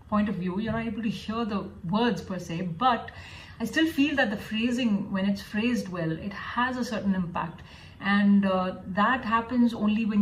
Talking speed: 200 wpm